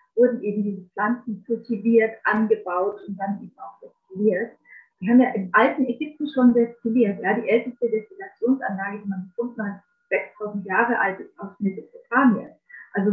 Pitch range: 210-255 Hz